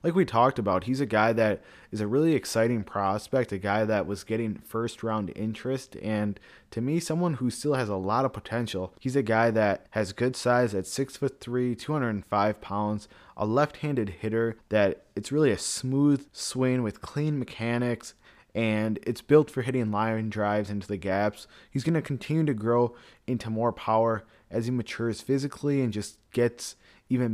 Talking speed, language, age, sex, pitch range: 180 wpm, English, 20-39, male, 105-125 Hz